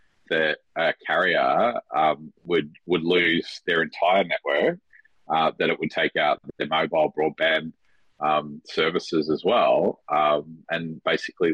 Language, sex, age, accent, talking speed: English, male, 30-49, Australian, 135 wpm